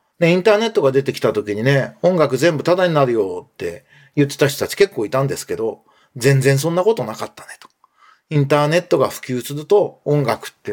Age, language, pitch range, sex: 40-59, Japanese, 135-200 Hz, male